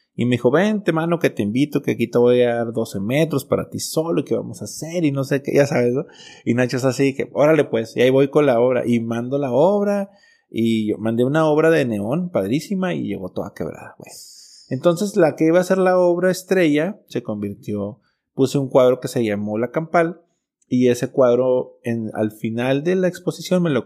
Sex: male